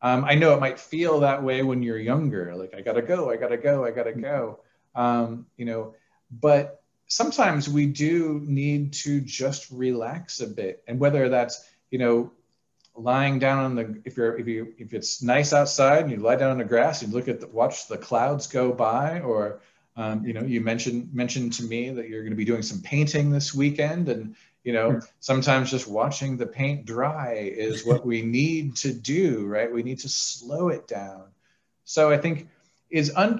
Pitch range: 120-155 Hz